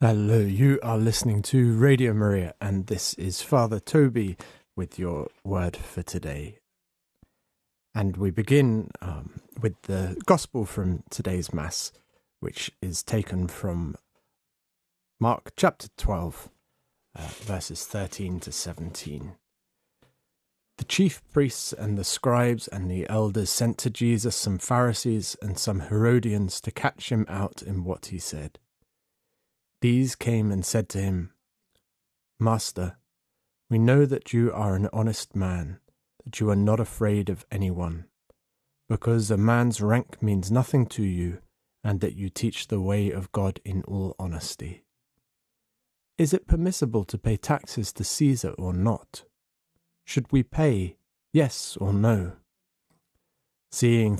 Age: 30-49